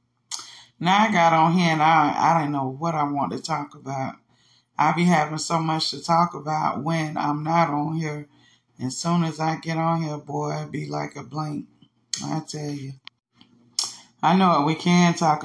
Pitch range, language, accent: 140-170 Hz, English, American